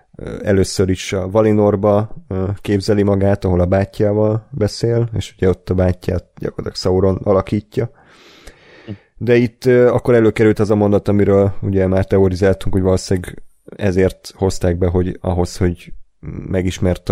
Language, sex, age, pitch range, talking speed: Hungarian, male, 30-49, 90-105 Hz, 135 wpm